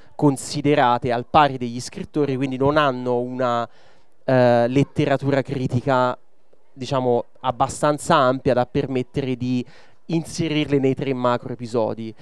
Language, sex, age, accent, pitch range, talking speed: Italian, male, 20-39, native, 120-145 Hz, 115 wpm